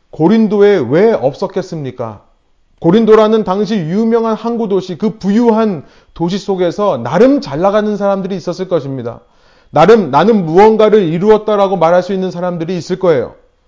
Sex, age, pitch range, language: male, 30-49, 170-230 Hz, Korean